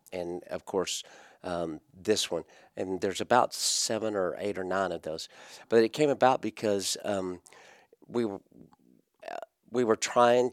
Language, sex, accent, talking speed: English, male, American, 155 wpm